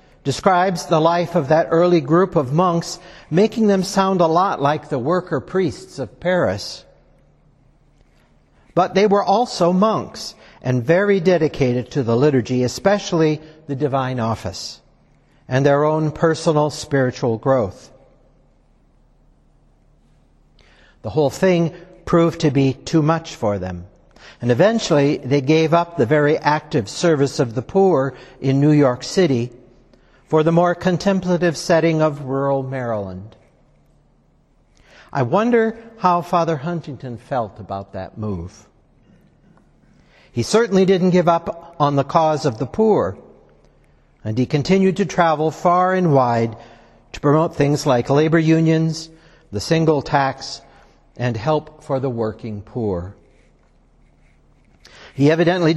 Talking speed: 130 wpm